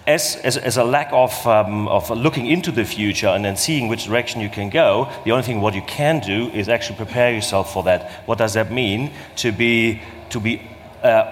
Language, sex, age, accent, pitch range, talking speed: English, male, 30-49, German, 110-130 Hz, 225 wpm